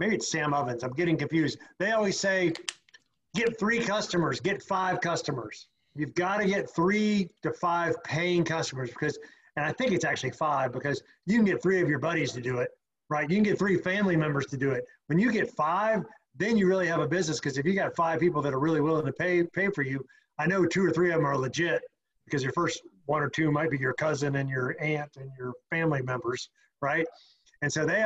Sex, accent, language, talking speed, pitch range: male, American, English, 230 wpm, 150-185 Hz